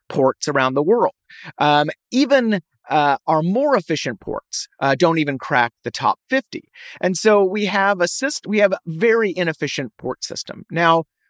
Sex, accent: male, American